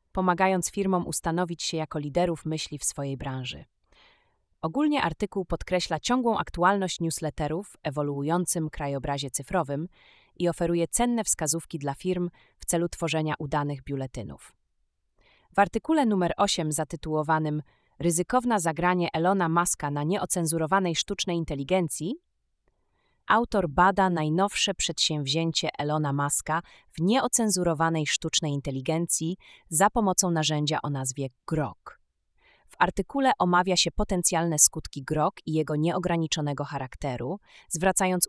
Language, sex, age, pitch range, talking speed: Polish, female, 30-49, 145-185 Hz, 115 wpm